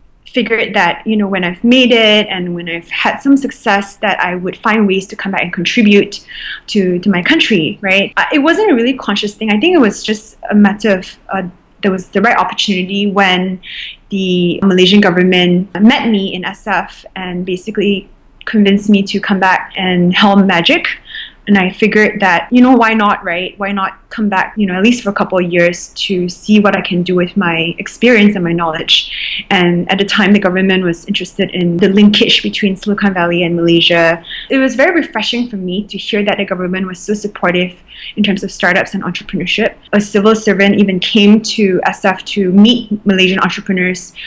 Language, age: English, 20-39